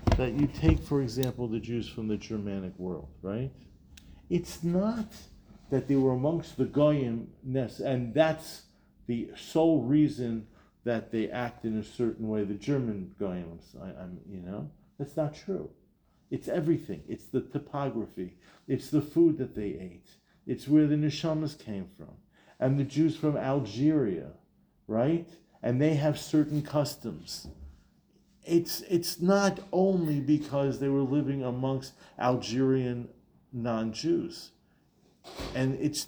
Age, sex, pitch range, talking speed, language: 50-69, male, 115-150 Hz, 135 wpm, English